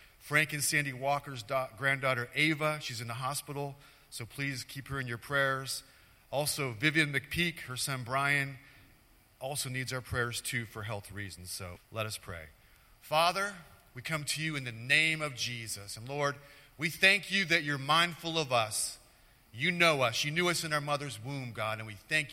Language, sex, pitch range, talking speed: English, male, 115-150 Hz, 190 wpm